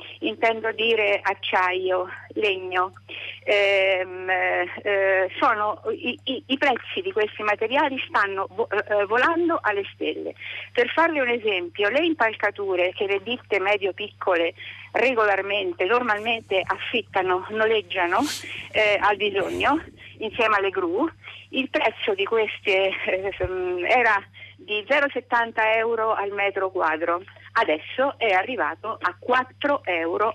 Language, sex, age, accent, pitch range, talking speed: Italian, female, 50-69, native, 185-265 Hz, 115 wpm